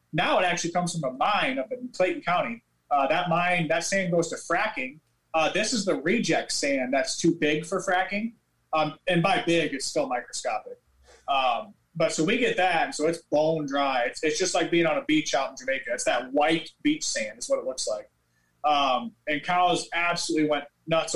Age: 30-49